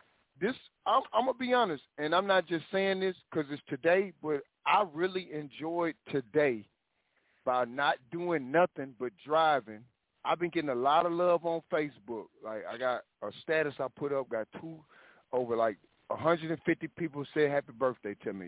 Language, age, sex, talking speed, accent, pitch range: English, 40-59, male, 175 wpm, American, 125-165 Hz